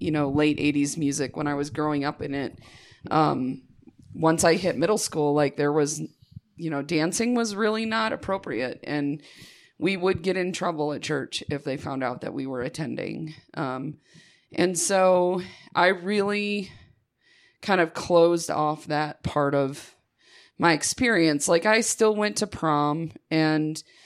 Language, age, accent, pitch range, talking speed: English, 30-49, American, 145-175 Hz, 160 wpm